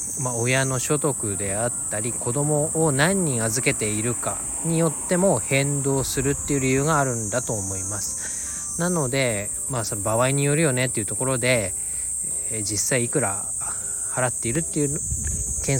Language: Japanese